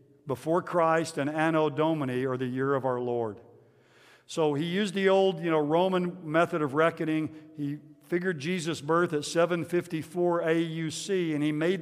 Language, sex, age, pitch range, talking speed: English, male, 50-69, 145-175 Hz, 160 wpm